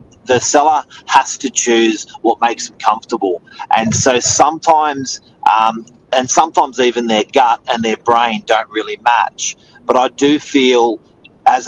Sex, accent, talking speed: male, Australian, 150 wpm